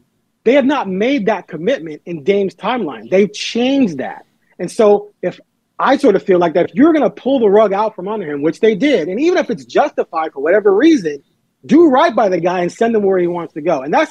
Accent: American